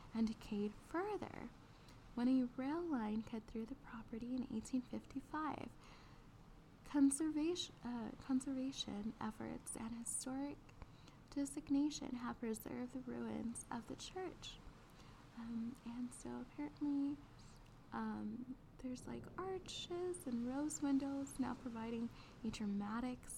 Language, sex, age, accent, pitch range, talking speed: English, female, 10-29, American, 225-275 Hz, 105 wpm